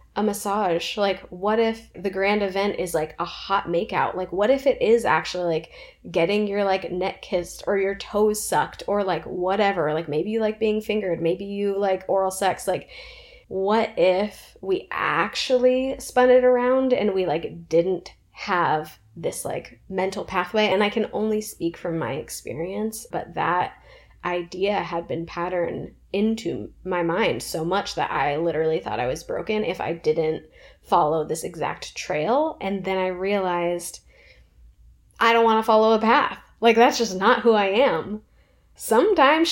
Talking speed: 170 wpm